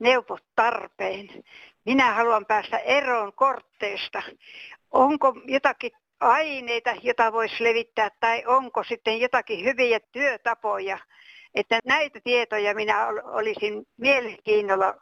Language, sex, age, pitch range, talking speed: Finnish, female, 60-79, 210-255 Hz, 100 wpm